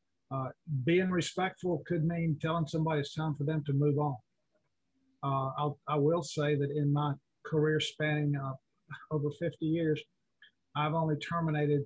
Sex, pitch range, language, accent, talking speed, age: male, 140-160 Hz, English, American, 145 wpm, 50-69